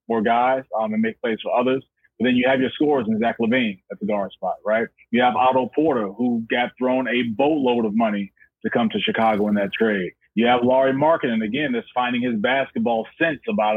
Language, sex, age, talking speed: English, male, 30-49, 220 wpm